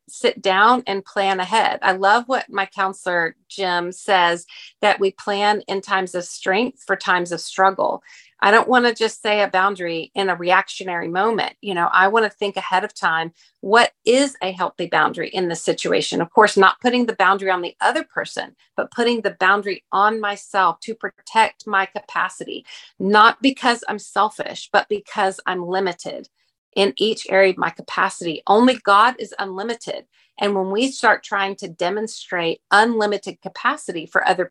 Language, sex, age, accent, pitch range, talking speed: English, female, 40-59, American, 185-220 Hz, 175 wpm